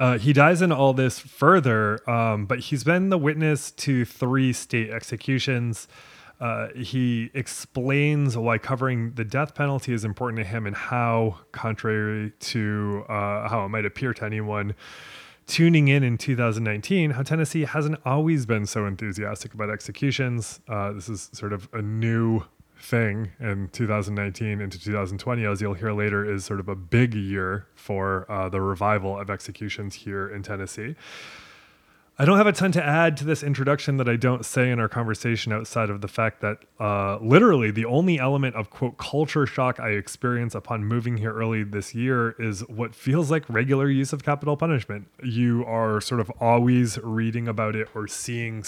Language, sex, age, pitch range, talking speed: English, male, 20-39, 105-130 Hz, 175 wpm